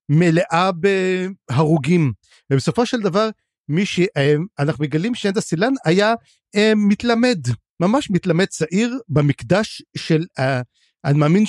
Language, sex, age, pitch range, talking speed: Hebrew, male, 50-69, 145-210 Hz, 95 wpm